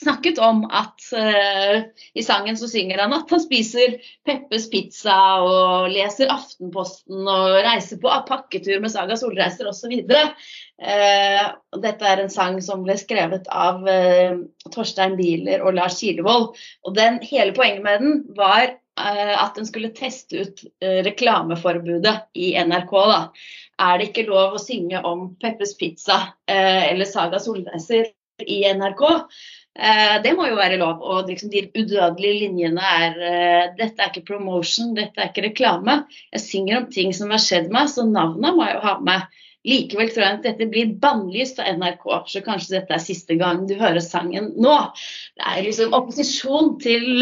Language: English